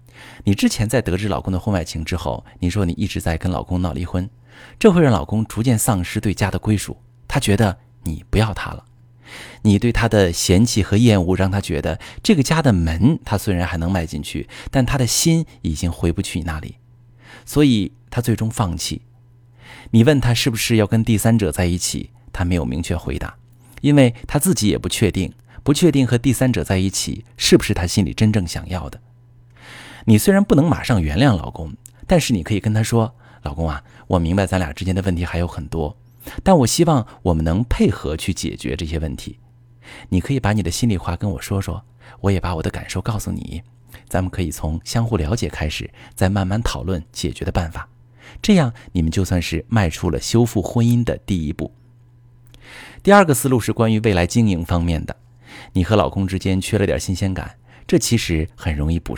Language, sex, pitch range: Chinese, male, 90-120 Hz